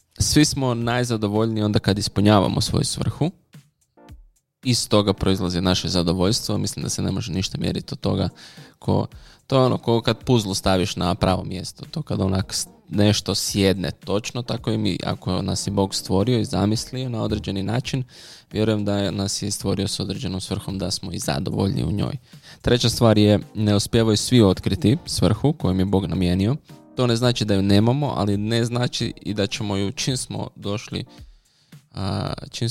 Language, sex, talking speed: Croatian, male, 170 wpm